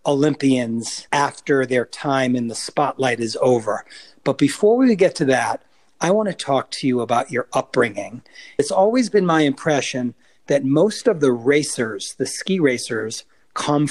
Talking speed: 165 wpm